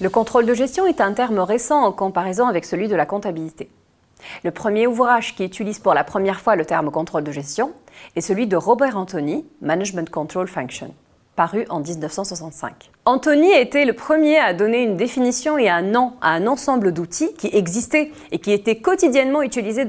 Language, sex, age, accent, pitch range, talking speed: French, female, 30-49, French, 170-270 Hz, 185 wpm